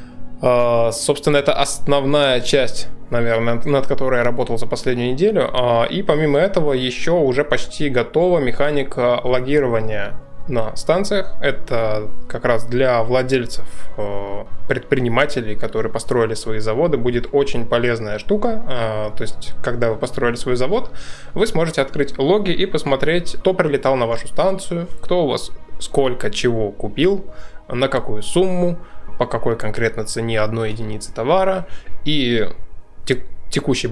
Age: 20-39